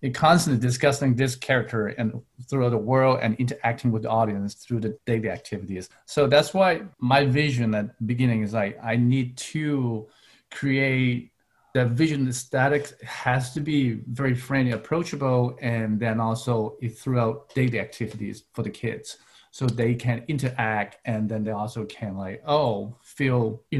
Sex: male